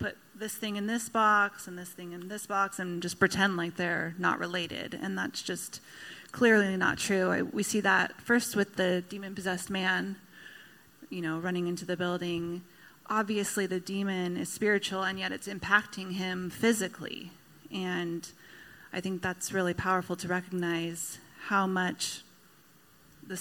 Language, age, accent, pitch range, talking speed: English, 30-49, American, 180-205 Hz, 155 wpm